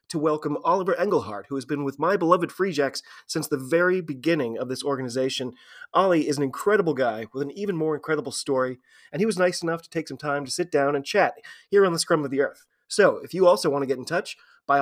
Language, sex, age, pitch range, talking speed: English, male, 30-49, 145-185 Hz, 245 wpm